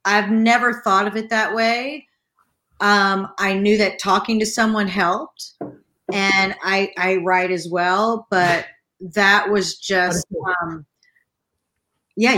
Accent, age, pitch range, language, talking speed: American, 40-59, 190-230 Hz, English, 130 wpm